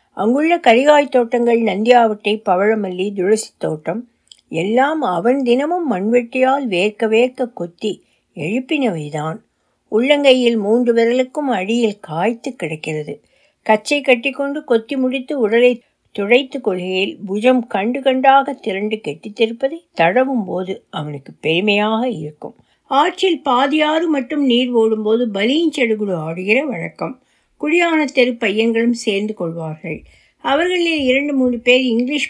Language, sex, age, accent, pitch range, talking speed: Tamil, female, 60-79, native, 200-270 Hz, 105 wpm